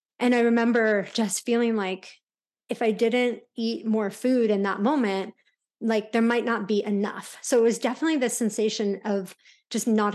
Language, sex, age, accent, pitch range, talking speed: English, female, 30-49, American, 205-240 Hz, 175 wpm